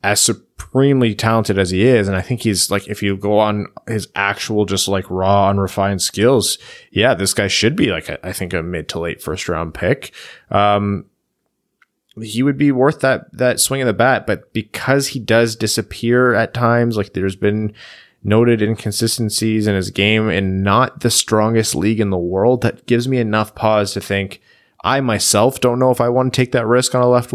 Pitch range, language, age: 100-120 Hz, English, 20-39